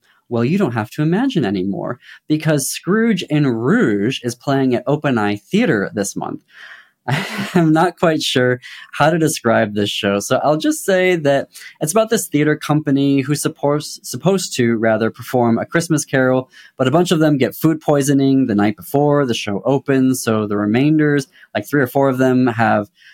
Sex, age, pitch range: male, 20-39, 110-160 Hz